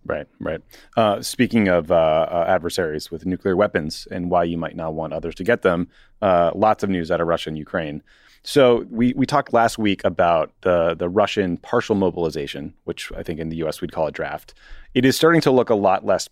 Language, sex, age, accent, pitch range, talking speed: English, male, 30-49, American, 80-95 Hz, 220 wpm